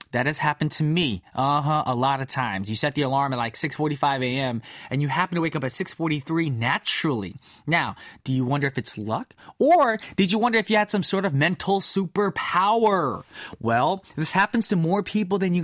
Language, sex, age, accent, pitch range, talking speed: English, male, 20-39, American, 150-210 Hz, 210 wpm